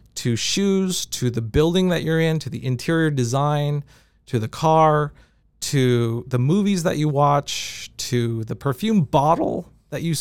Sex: male